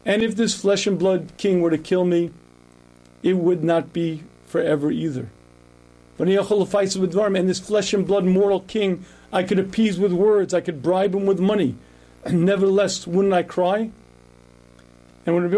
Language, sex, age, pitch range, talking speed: English, male, 50-69, 155-195 Hz, 145 wpm